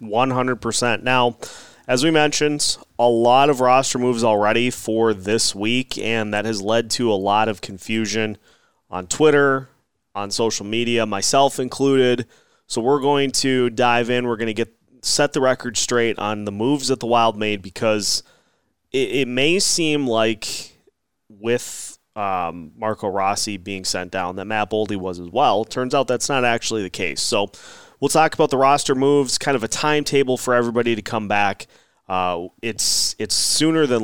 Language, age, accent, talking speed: English, 20-39, American, 170 wpm